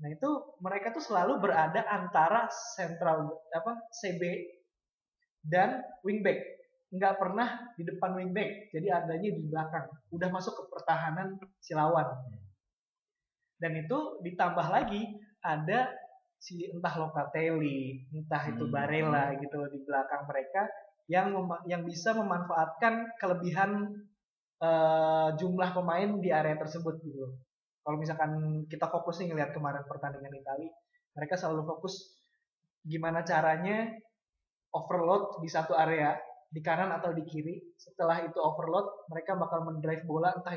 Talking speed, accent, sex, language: 125 wpm, Indonesian, male, English